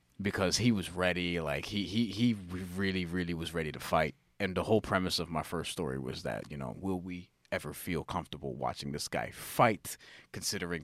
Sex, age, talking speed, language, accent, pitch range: male, 30-49, 200 wpm, English, American, 80-100 Hz